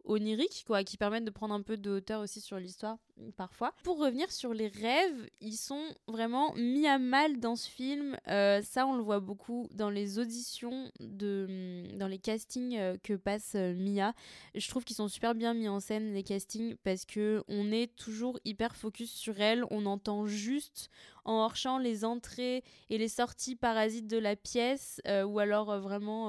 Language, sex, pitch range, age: French, female, 200-235 Hz, 20-39